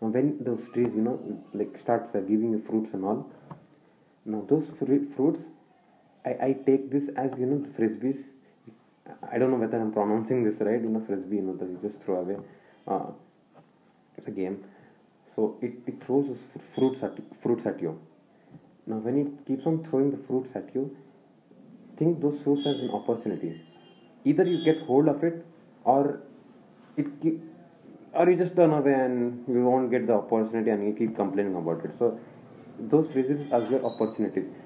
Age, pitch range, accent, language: 30-49, 115-145 Hz, Indian, English